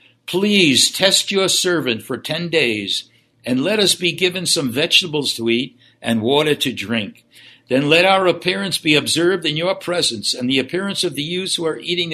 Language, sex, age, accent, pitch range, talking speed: English, male, 60-79, American, 125-175 Hz, 190 wpm